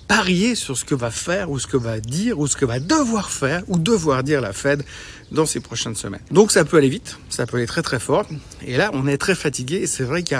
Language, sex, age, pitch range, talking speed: French, male, 60-79, 135-170 Hz, 270 wpm